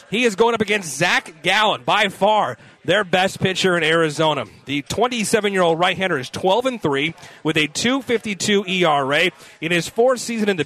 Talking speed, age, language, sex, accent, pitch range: 165 wpm, 30-49, English, male, American, 165-215 Hz